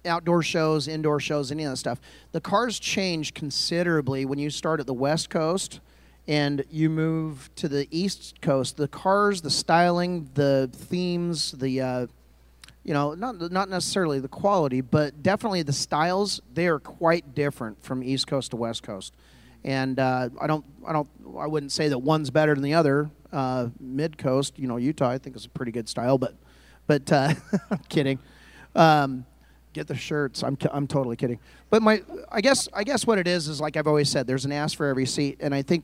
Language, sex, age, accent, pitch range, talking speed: English, male, 40-59, American, 135-160 Hz, 200 wpm